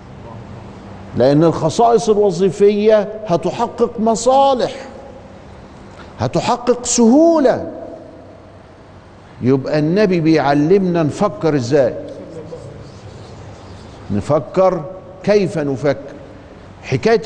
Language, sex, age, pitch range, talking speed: Arabic, male, 50-69, 145-205 Hz, 55 wpm